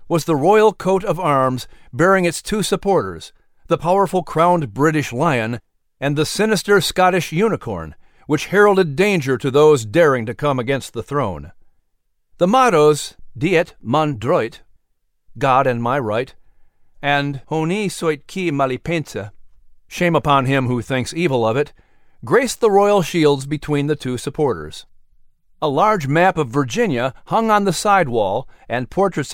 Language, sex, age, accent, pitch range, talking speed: English, male, 50-69, American, 130-175 Hz, 150 wpm